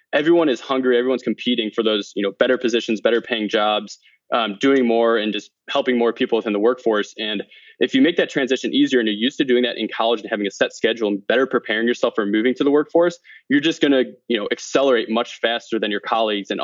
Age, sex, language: 20-39, male, English